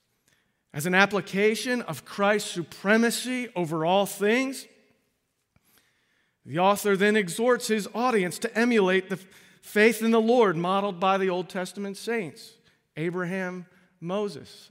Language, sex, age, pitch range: English, male, 40-59, 145-205 Hz